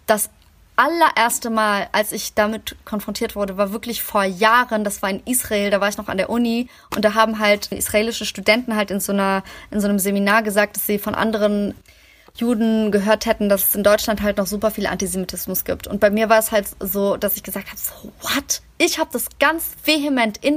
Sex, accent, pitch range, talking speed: female, German, 205-245 Hz, 215 wpm